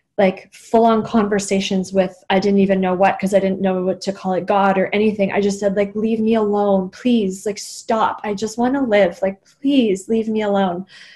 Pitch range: 190-220 Hz